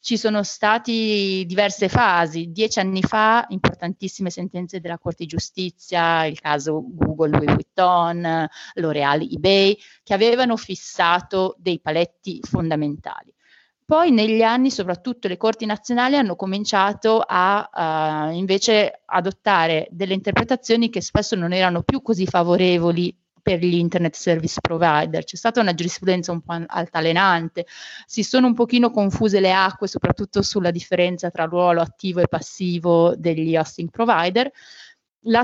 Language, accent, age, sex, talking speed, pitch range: Italian, native, 30-49, female, 135 wpm, 170-215 Hz